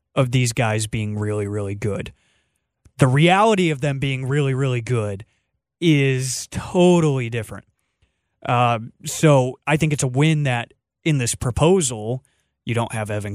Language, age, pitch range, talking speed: English, 20-39, 110-140 Hz, 150 wpm